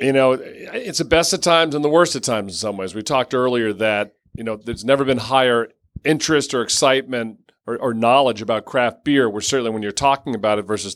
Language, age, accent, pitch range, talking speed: English, 40-59, American, 110-135 Hz, 230 wpm